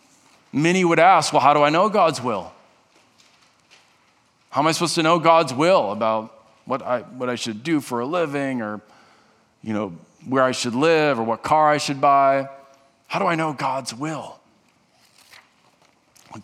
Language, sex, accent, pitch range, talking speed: English, male, American, 125-160 Hz, 175 wpm